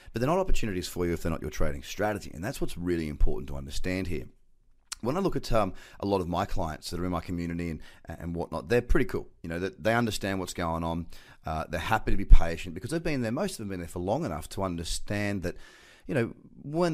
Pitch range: 85-115 Hz